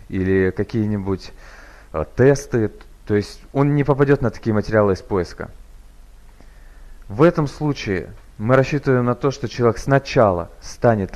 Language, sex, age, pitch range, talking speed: Russian, male, 30-49, 100-140 Hz, 130 wpm